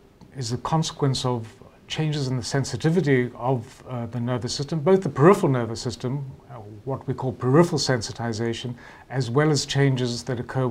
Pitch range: 120-140 Hz